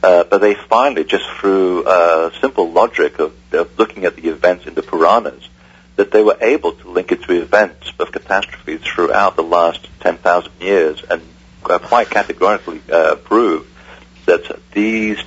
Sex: male